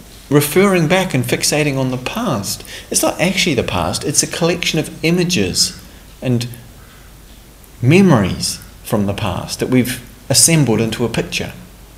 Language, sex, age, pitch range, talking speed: English, male, 40-59, 115-160 Hz, 140 wpm